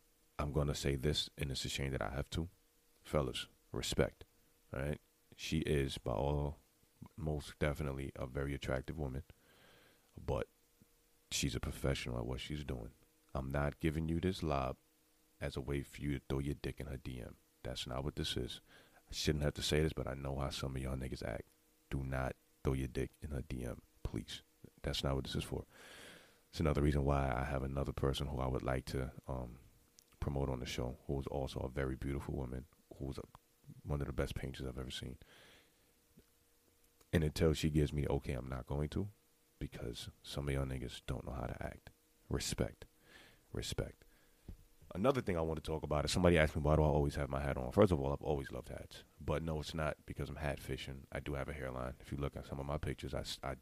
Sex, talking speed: male, 215 wpm